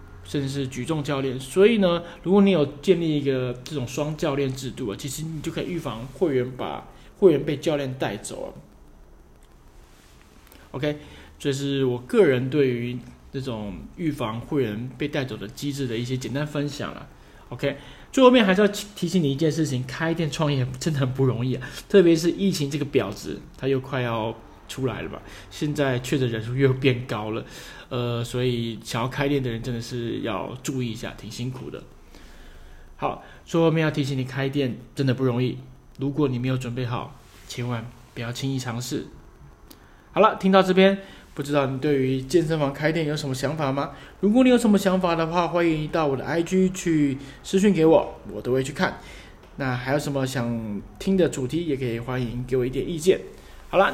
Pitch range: 120-155 Hz